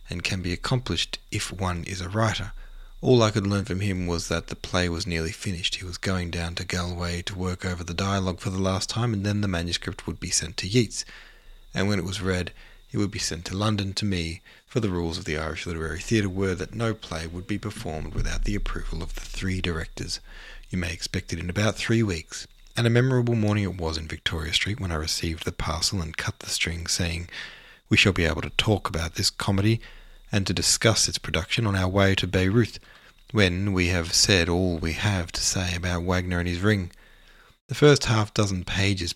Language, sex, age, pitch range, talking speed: English, male, 30-49, 85-105 Hz, 220 wpm